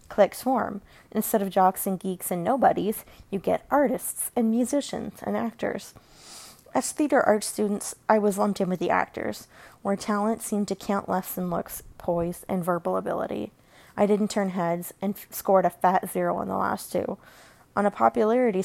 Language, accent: English, American